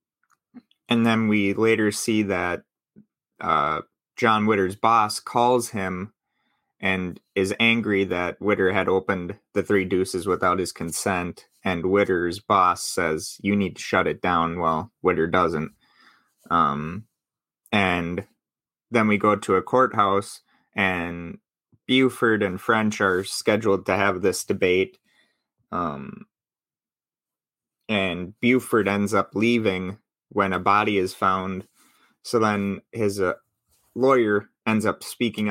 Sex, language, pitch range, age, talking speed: male, English, 95-110 Hz, 20-39, 125 wpm